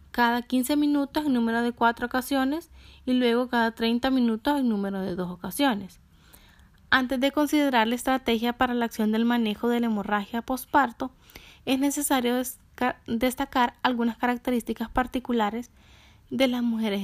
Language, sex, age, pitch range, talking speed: Spanish, female, 10-29, 215-260 Hz, 145 wpm